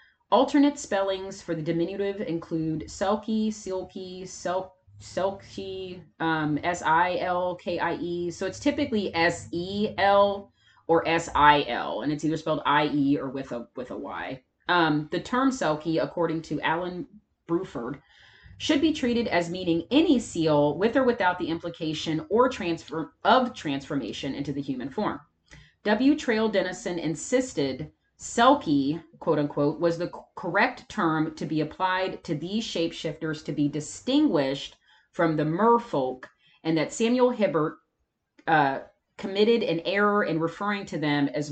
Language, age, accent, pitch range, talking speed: English, 30-49, American, 150-200 Hz, 135 wpm